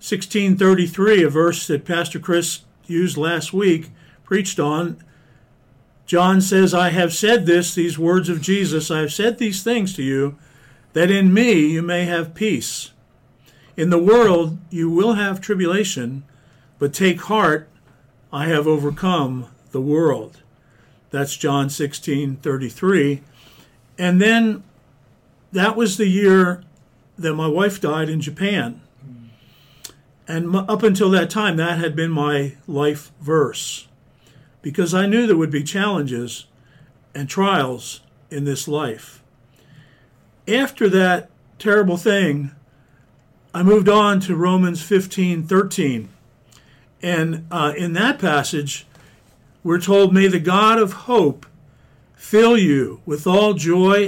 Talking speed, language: 130 wpm, English